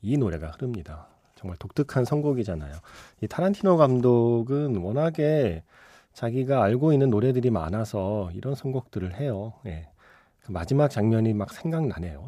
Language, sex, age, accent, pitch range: Korean, male, 30-49, native, 95-145 Hz